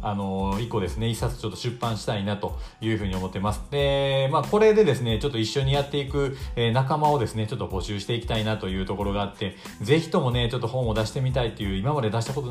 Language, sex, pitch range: Japanese, male, 100-135 Hz